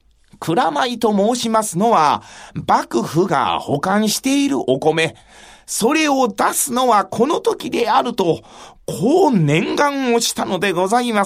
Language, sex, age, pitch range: Japanese, male, 40-59, 155-260 Hz